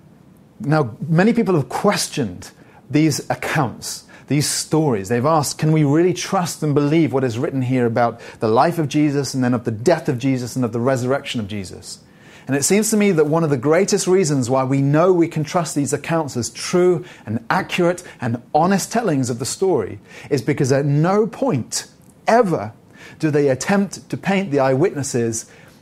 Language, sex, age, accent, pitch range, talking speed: English, male, 30-49, British, 120-155 Hz, 190 wpm